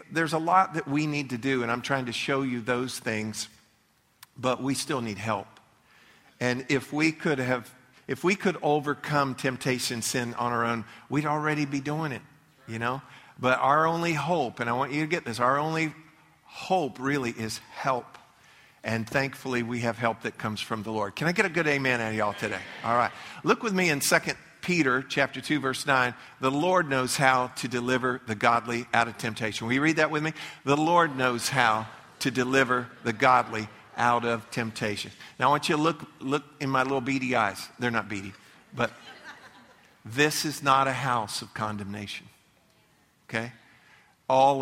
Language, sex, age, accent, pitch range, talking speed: English, male, 50-69, American, 115-145 Hz, 195 wpm